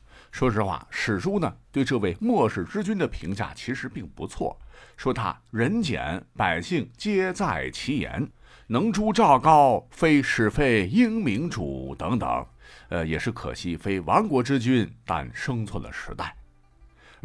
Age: 50-69